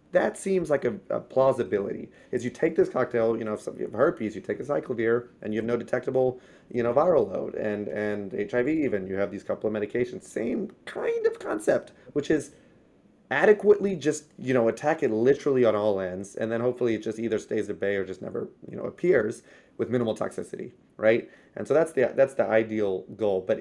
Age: 30-49